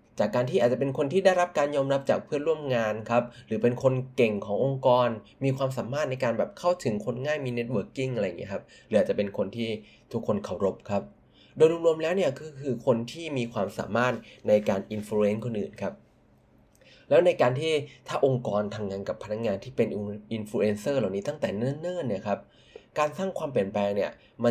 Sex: male